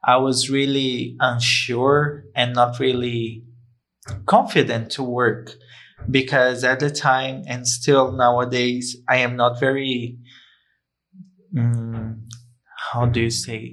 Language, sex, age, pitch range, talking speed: English, male, 20-39, 120-140 Hz, 115 wpm